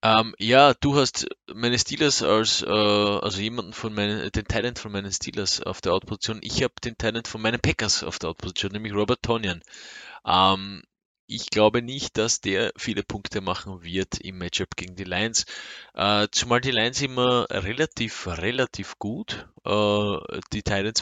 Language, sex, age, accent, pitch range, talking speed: German, male, 20-39, Swiss, 90-105 Hz, 170 wpm